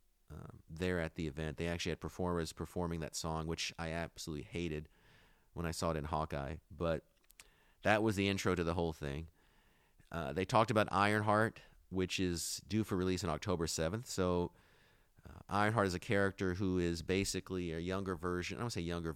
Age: 30-49